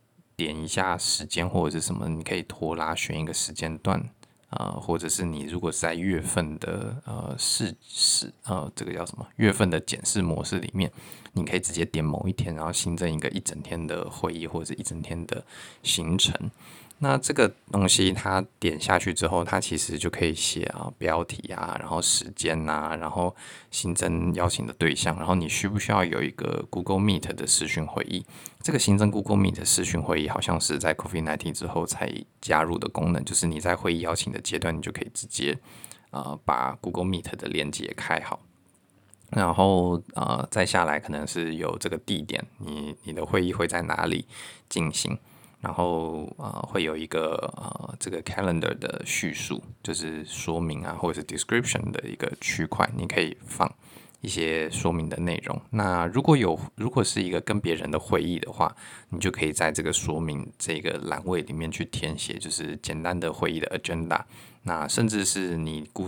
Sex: male